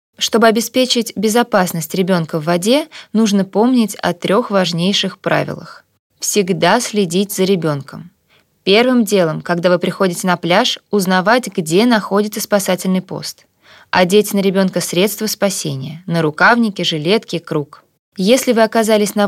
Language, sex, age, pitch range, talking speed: Russian, female, 20-39, 185-230 Hz, 130 wpm